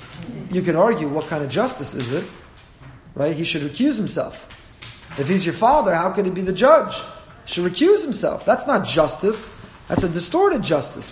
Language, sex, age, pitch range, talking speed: English, male, 30-49, 150-210 Hz, 190 wpm